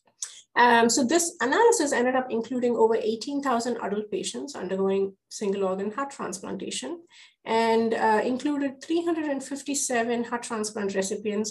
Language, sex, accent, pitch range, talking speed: English, female, Indian, 195-245 Hz, 120 wpm